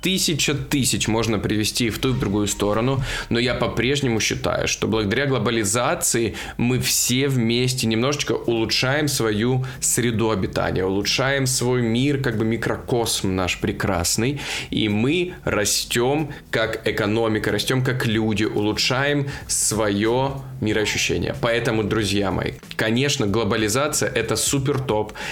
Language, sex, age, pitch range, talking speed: Russian, male, 20-39, 110-135 Hz, 125 wpm